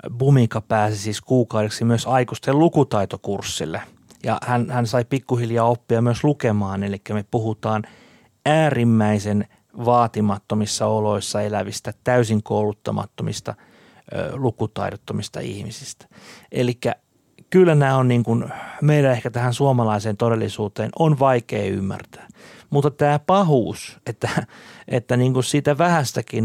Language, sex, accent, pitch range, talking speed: Finnish, male, native, 110-145 Hz, 110 wpm